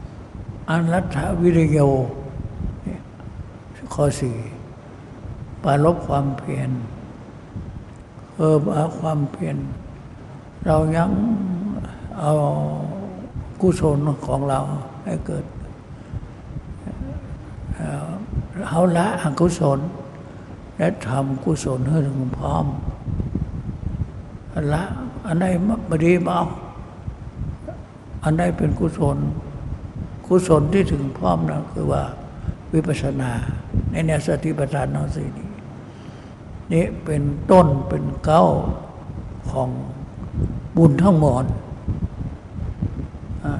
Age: 60-79